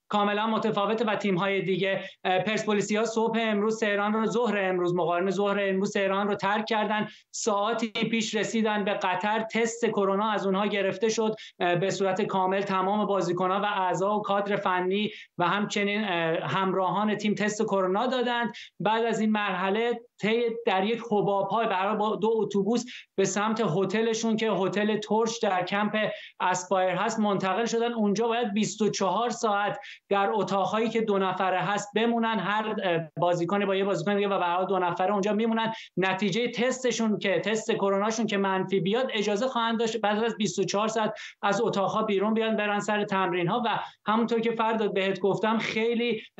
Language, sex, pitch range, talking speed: Persian, male, 195-220 Hz, 160 wpm